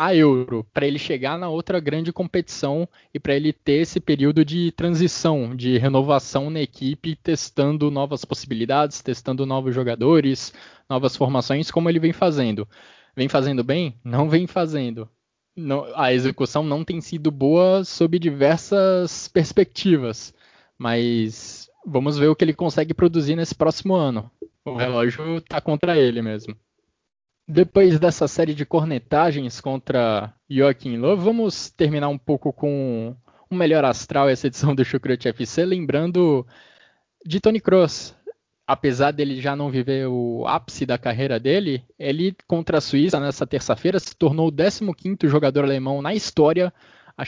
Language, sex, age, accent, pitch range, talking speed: Portuguese, male, 20-39, Brazilian, 130-165 Hz, 145 wpm